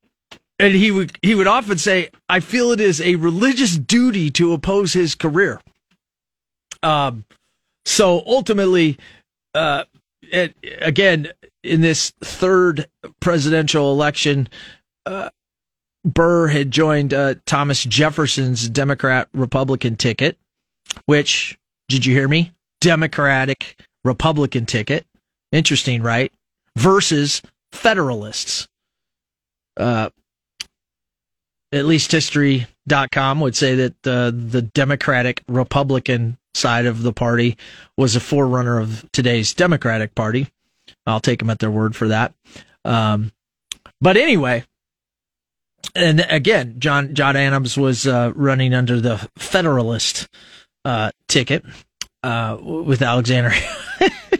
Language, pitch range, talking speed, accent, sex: English, 125-165 Hz, 110 wpm, American, male